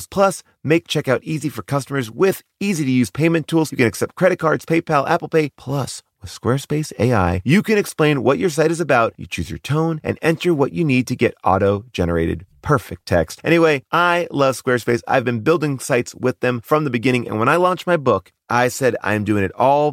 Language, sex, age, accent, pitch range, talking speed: English, male, 30-49, American, 100-155 Hz, 210 wpm